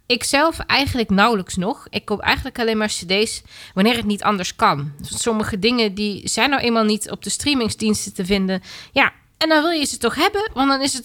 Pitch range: 180-245 Hz